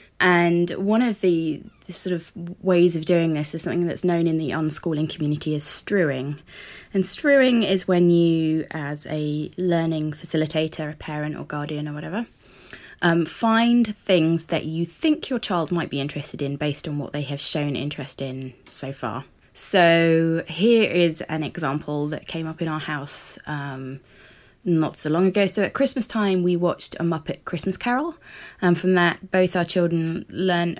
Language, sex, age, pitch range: English, female, 20-39, 150-180 Hz